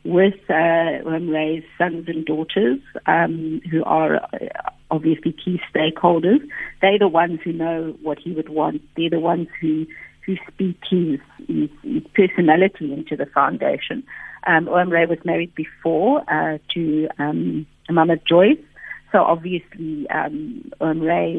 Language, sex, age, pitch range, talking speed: English, female, 60-79, 160-195 Hz, 130 wpm